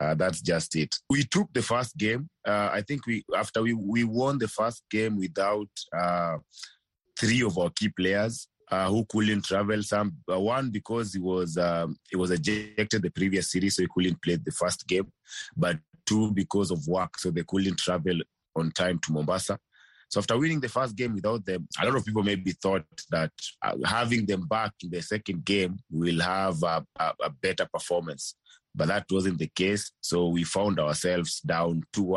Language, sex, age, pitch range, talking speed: English, male, 30-49, 85-105 Hz, 195 wpm